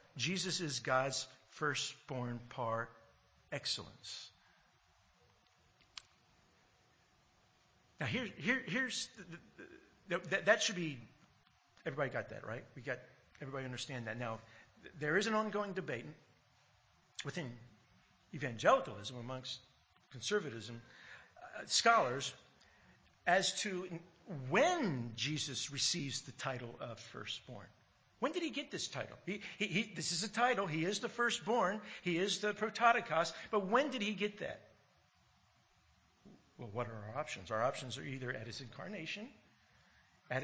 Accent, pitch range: American, 130-215 Hz